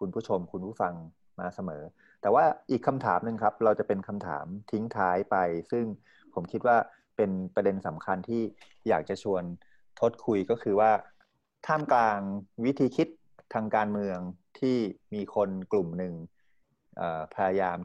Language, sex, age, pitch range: Thai, male, 30-49, 95-115 Hz